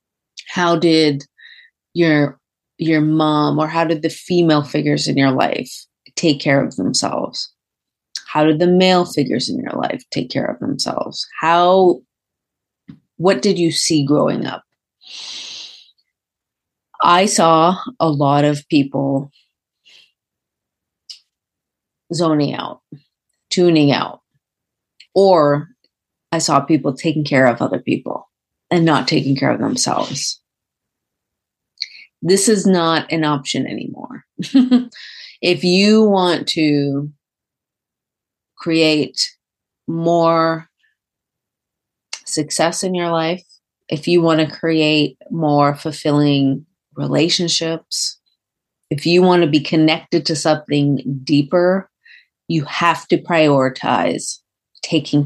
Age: 30-49